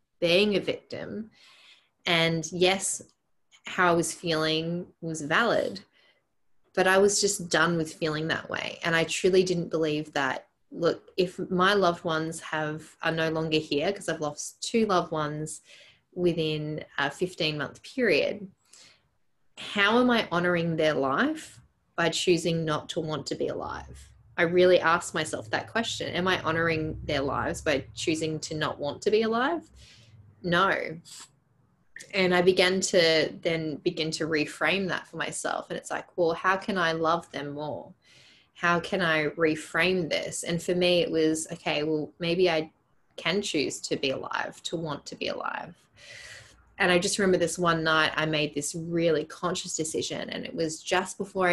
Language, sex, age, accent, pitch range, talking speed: English, female, 20-39, Australian, 160-185 Hz, 170 wpm